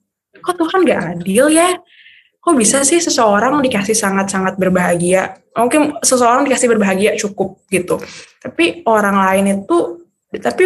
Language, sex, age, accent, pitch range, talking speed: Indonesian, female, 20-39, native, 205-255 Hz, 130 wpm